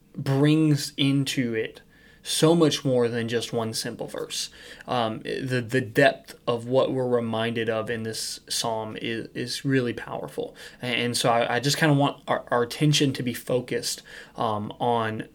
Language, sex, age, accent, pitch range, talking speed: English, male, 20-39, American, 120-145 Hz, 170 wpm